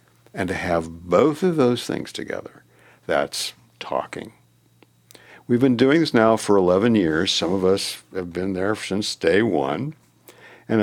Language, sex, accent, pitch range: English, male, American, 90-130 Hz